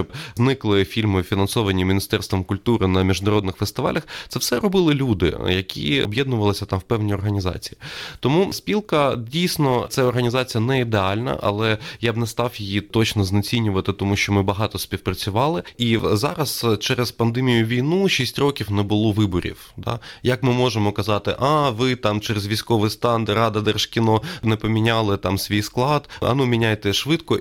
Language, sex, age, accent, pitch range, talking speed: Ukrainian, male, 20-39, native, 100-120 Hz, 155 wpm